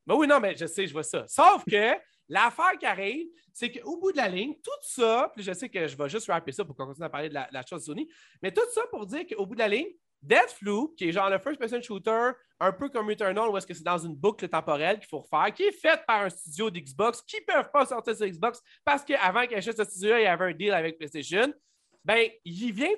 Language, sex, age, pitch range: French, male, 30-49, 185-290 Hz